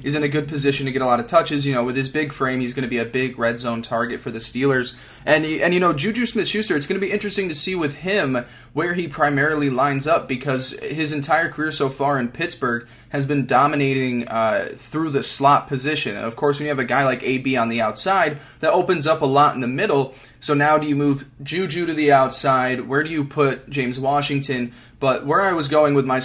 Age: 20-39